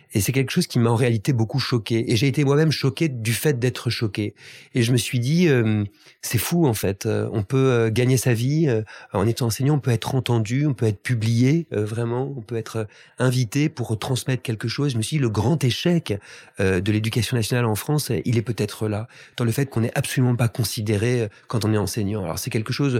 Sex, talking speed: male, 235 wpm